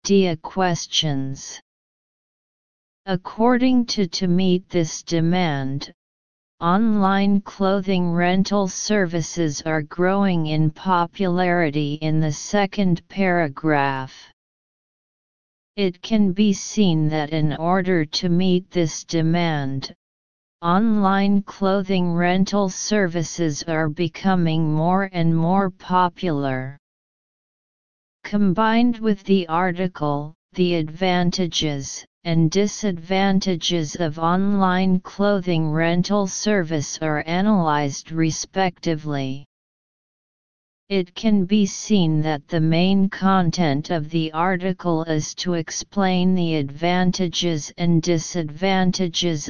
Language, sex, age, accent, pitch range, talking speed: English, female, 40-59, American, 160-195 Hz, 90 wpm